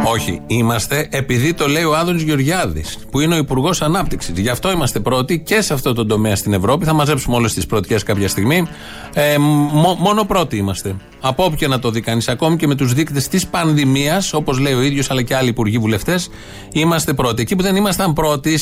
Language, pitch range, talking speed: Greek, 120-165 Hz, 210 wpm